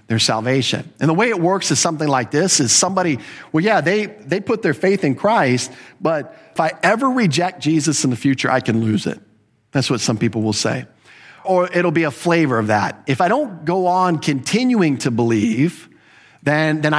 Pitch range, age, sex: 120-160 Hz, 50-69, male